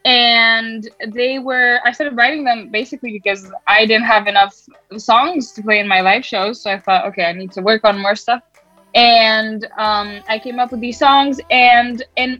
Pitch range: 205-240 Hz